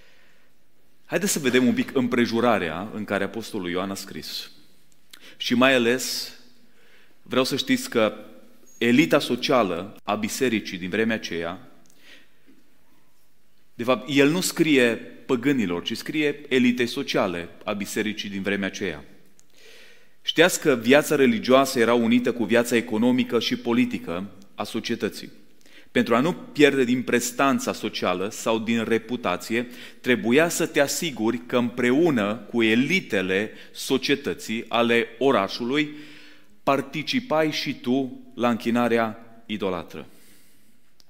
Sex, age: male, 30-49